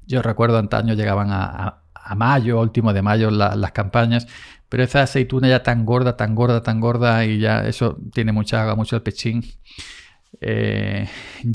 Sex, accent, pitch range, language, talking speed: male, Spanish, 105-120 Hz, Spanish, 175 wpm